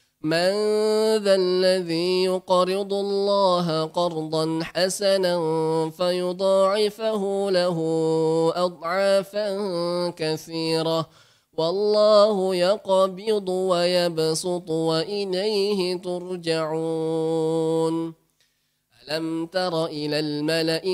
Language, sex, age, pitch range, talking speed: Indonesian, male, 20-39, 165-200 Hz, 55 wpm